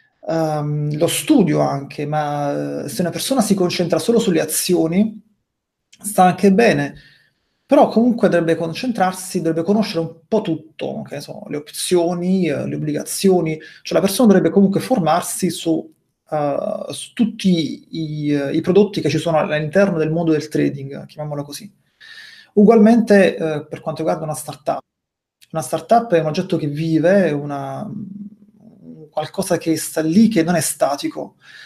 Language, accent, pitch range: Italian, native, 155-205 Hz